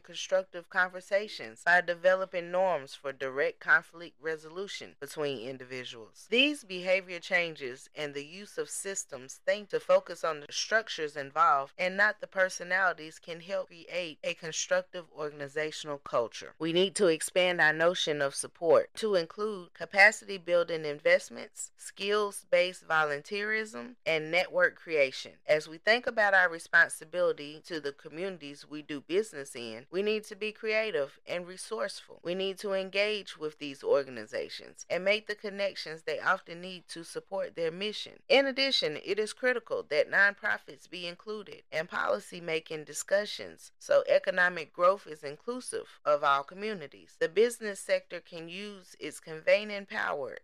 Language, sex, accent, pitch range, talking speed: English, female, American, 160-215 Hz, 145 wpm